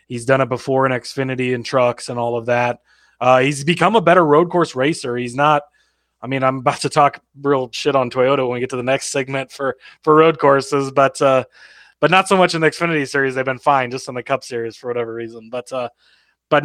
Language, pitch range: English, 125-145 Hz